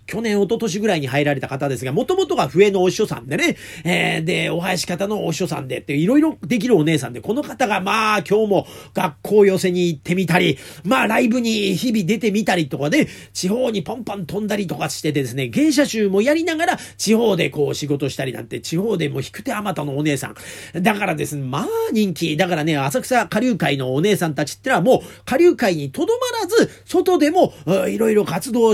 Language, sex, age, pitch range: Japanese, male, 40-59, 170-255 Hz